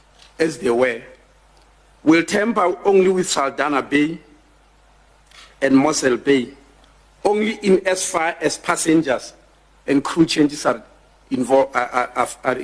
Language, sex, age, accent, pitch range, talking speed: English, male, 50-69, South African, 140-200 Hz, 110 wpm